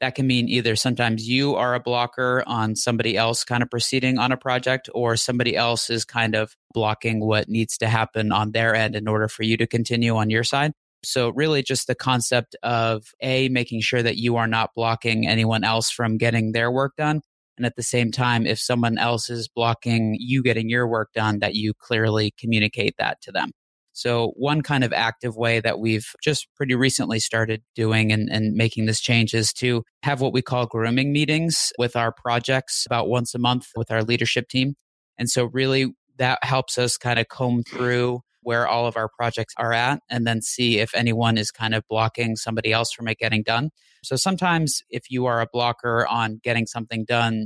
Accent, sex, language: American, male, English